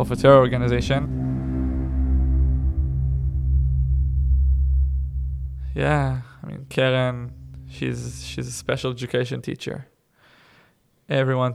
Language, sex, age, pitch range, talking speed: English, male, 20-39, 115-130 Hz, 80 wpm